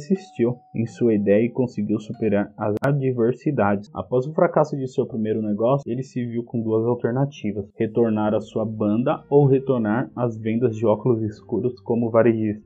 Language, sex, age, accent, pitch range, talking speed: Portuguese, male, 20-39, Brazilian, 115-140 Hz, 165 wpm